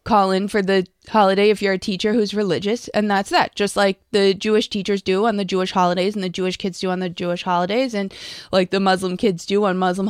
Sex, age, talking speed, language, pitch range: female, 20-39, 245 wpm, English, 195-250 Hz